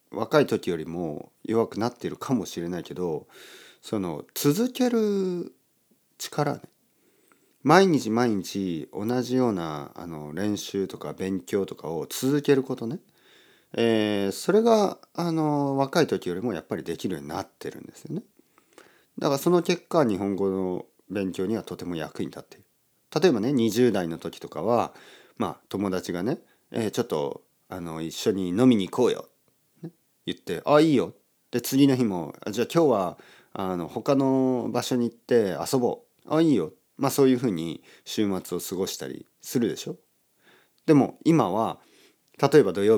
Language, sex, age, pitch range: Japanese, male, 40-59, 95-140 Hz